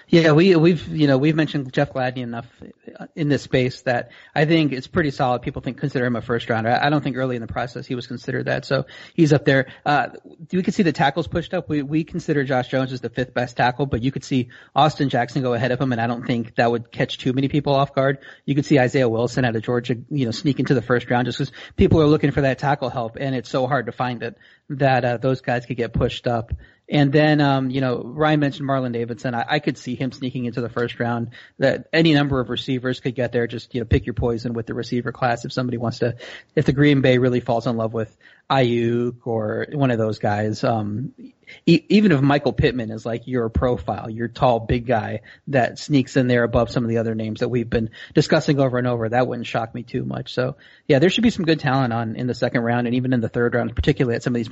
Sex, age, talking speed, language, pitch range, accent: male, 30-49, 260 wpm, English, 120-140 Hz, American